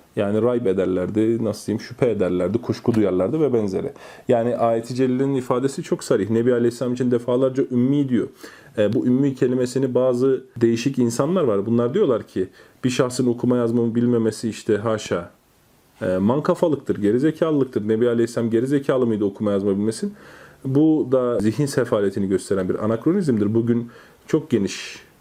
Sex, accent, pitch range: male, native, 110-140 Hz